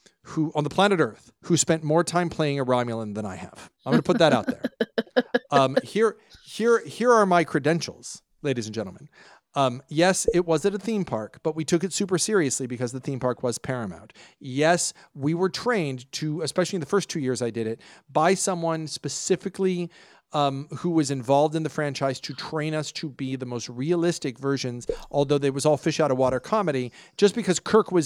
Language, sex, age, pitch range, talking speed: English, male, 40-59, 135-175 Hz, 205 wpm